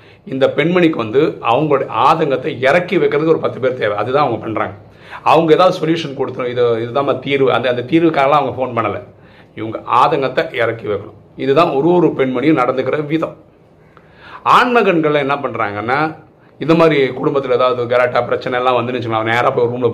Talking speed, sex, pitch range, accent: 155 wpm, male, 120-170 Hz, native